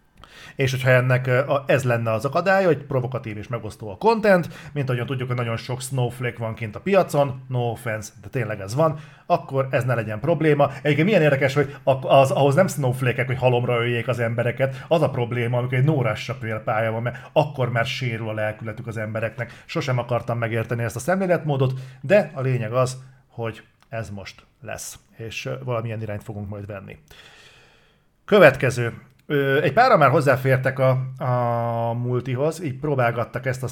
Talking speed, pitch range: 170 wpm, 120-140 Hz